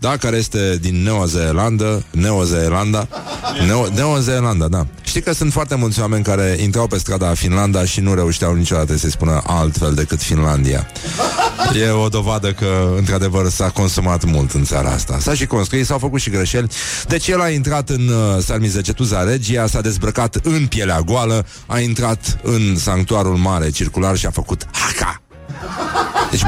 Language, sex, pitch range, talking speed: Romanian, male, 90-130 Hz, 155 wpm